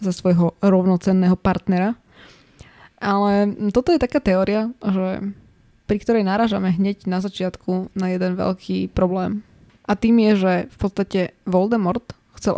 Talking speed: 135 wpm